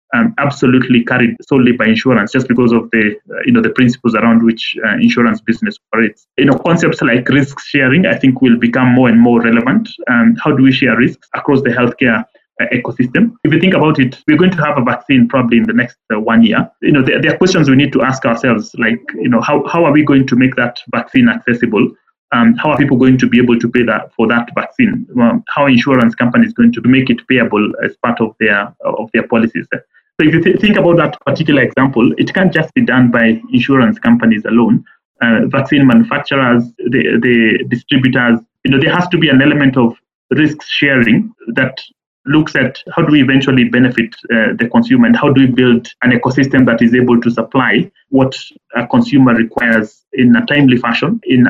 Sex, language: male, English